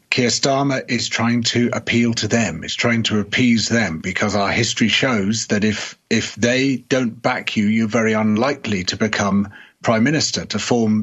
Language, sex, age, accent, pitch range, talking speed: English, male, 40-59, British, 105-130 Hz, 180 wpm